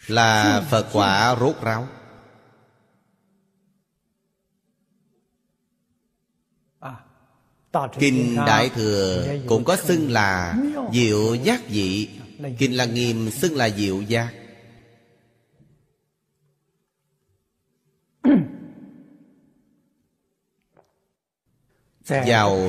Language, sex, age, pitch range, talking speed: Vietnamese, male, 30-49, 110-165 Hz, 60 wpm